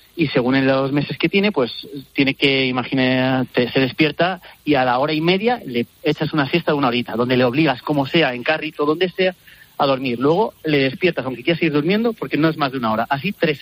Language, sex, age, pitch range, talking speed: Spanish, male, 30-49, 130-180 Hz, 235 wpm